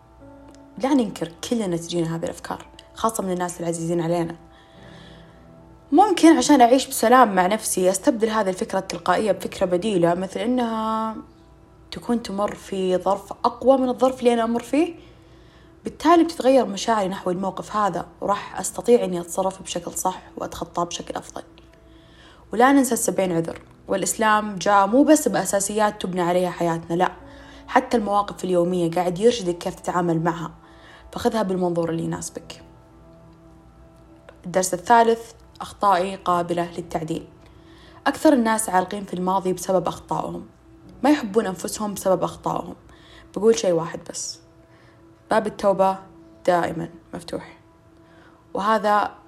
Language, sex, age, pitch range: Arabic, female, 20-39, 175-230 Hz